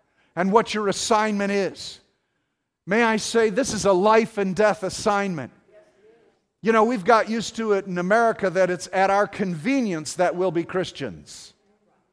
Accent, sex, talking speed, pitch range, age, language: American, male, 165 wpm, 180-220 Hz, 50-69, English